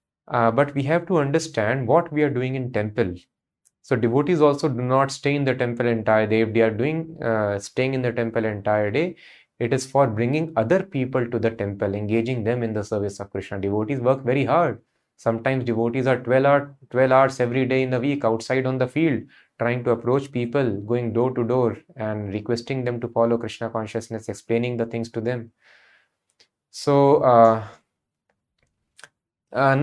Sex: male